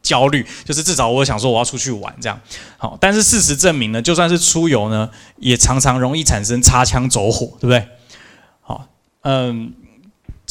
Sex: male